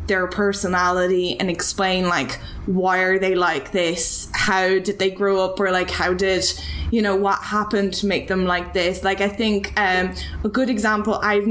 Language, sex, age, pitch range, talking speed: English, female, 10-29, 180-200 Hz, 190 wpm